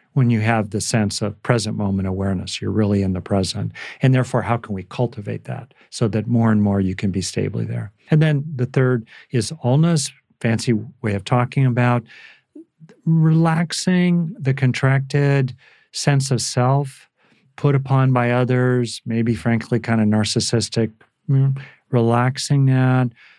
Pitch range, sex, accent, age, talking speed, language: 110-140 Hz, male, American, 50-69, 155 wpm, English